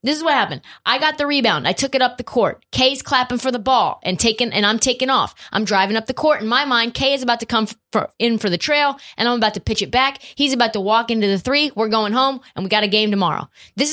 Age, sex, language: 20-39, female, English